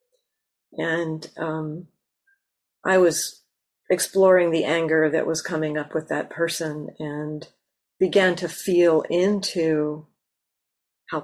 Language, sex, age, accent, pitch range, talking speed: English, female, 50-69, American, 160-195 Hz, 105 wpm